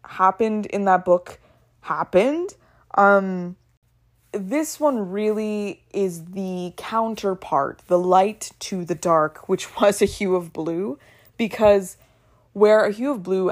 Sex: female